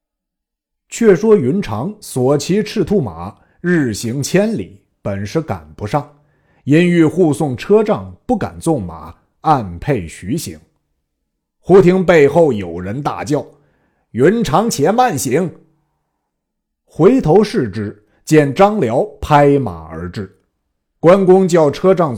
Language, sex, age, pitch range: Chinese, male, 50-69, 110-180 Hz